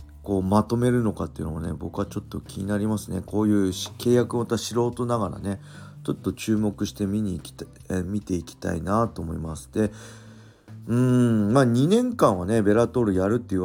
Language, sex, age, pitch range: Japanese, male, 40-59, 95-125 Hz